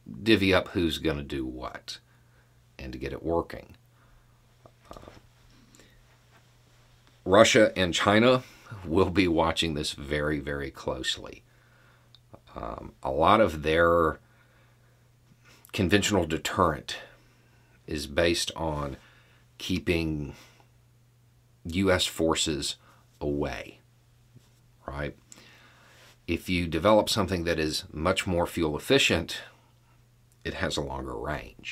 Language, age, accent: English, 40-59, American